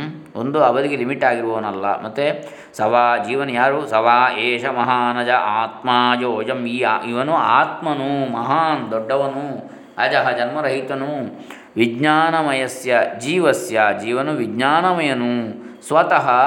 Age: 20-39